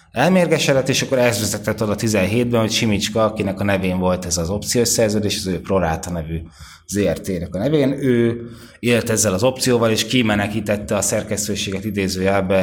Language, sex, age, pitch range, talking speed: Hungarian, male, 20-39, 95-120 Hz, 155 wpm